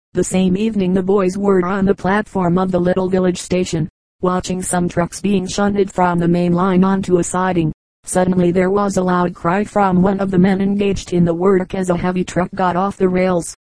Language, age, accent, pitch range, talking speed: English, 40-59, American, 180-195 Hz, 215 wpm